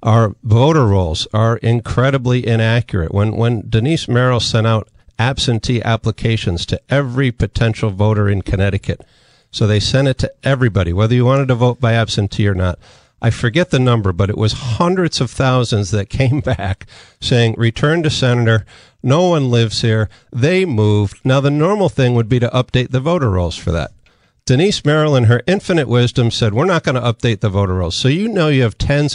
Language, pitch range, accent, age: English, 110-140 Hz, American, 50-69